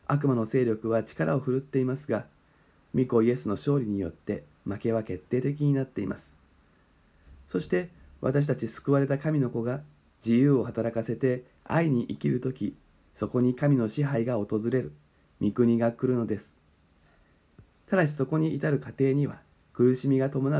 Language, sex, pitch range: Japanese, male, 95-135 Hz